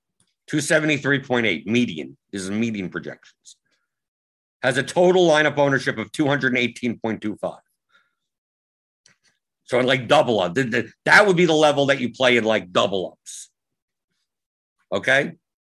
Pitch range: 110-150 Hz